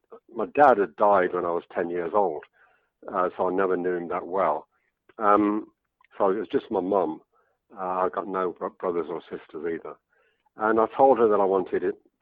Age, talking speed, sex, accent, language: 50-69, 205 wpm, male, British, English